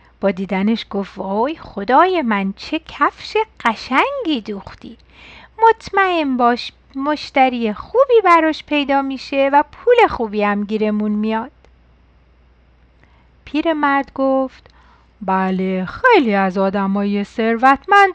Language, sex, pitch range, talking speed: Persian, female, 215-305 Hz, 100 wpm